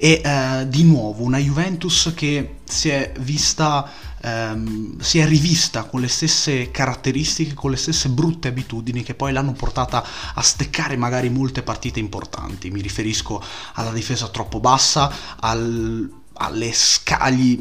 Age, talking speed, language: 30-49, 145 wpm, Italian